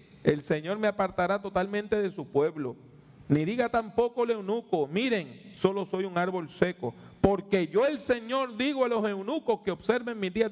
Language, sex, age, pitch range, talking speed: English, male, 40-59, 140-225 Hz, 175 wpm